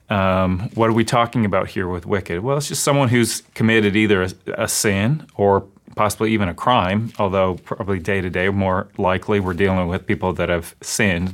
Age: 30-49